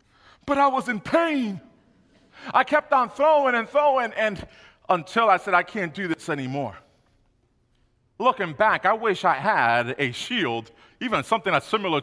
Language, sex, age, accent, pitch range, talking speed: English, male, 40-59, American, 170-250 Hz, 160 wpm